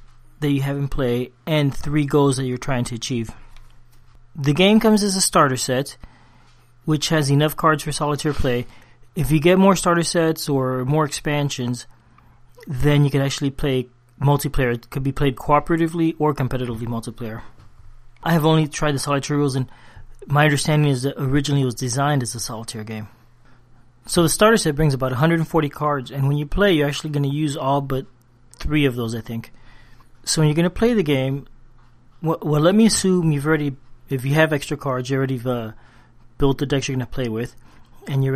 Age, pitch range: 30-49, 120-150 Hz